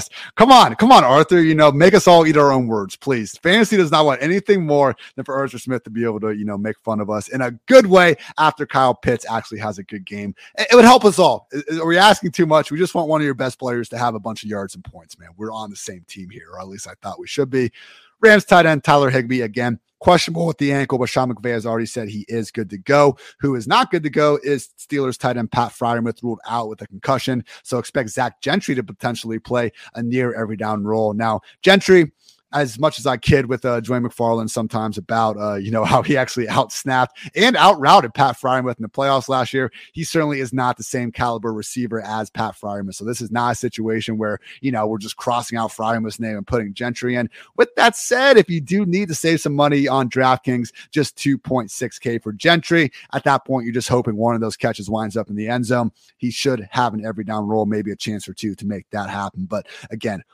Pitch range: 110-145 Hz